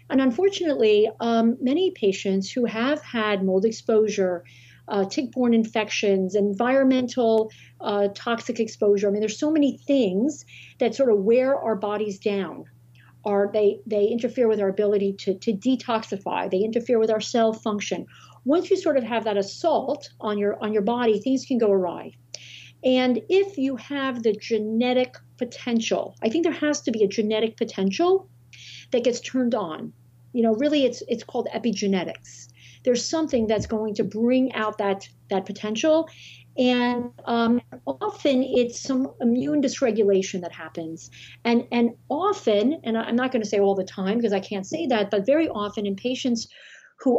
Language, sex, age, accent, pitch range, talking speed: English, female, 50-69, American, 200-255 Hz, 165 wpm